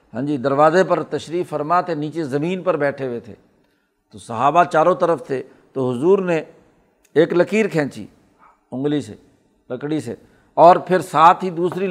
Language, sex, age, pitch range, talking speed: Urdu, male, 60-79, 155-195 Hz, 165 wpm